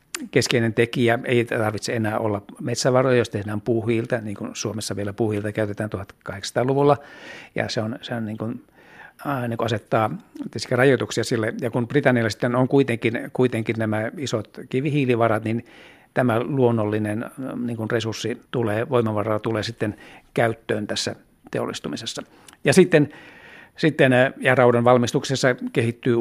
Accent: native